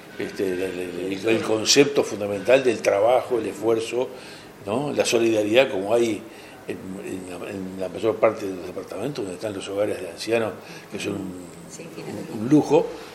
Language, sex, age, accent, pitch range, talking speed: Spanish, male, 60-79, Argentinian, 100-150 Hz, 145 wpm